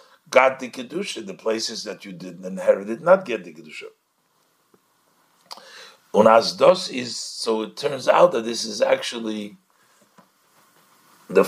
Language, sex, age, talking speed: English, male, 50-69, 130 wpm